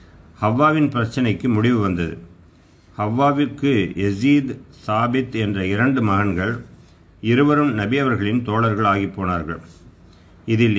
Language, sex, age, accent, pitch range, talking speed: Tamil, male, 50-69, native, 90-120 Hz, 90 wpm